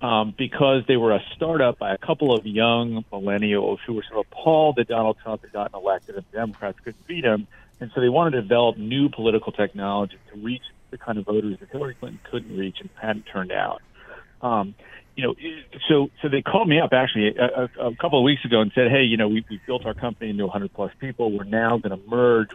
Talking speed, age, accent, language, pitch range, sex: 230 wpm, 50-69, American, English, 105-130 Hz, male